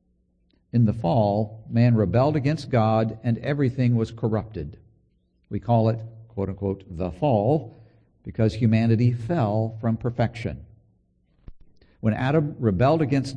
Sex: male